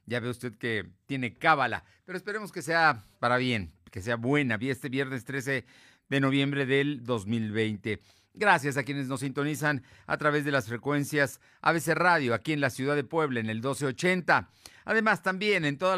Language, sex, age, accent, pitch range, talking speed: Spanish, male, 50-69, Mexican, 110-150 Hz, 180 wpm